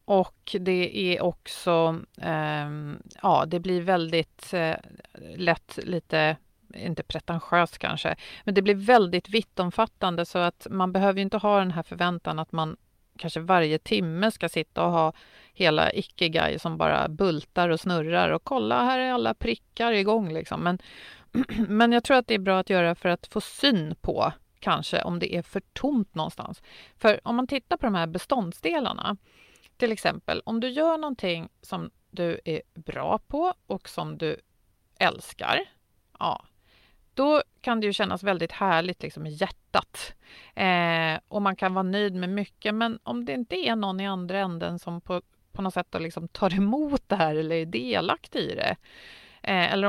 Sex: female